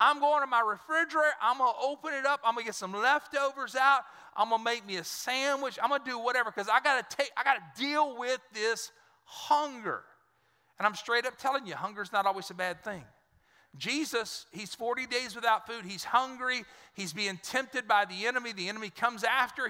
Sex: male